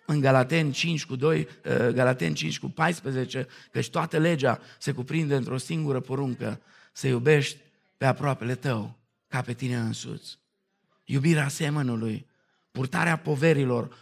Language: Romanian